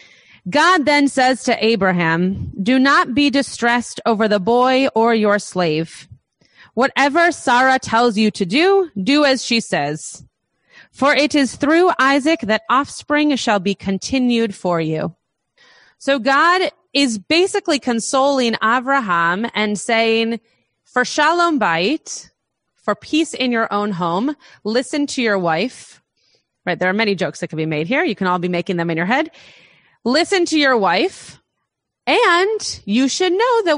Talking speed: 155 wpm